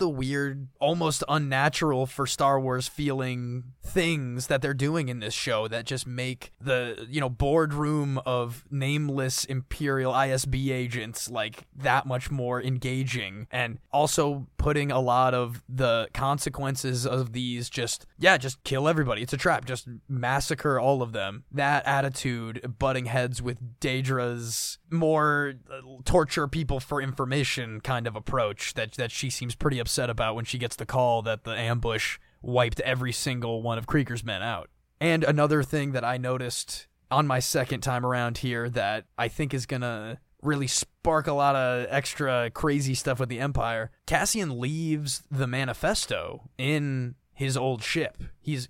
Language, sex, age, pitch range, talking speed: English, male, 20-39, 125-145 Hz, 160 wpm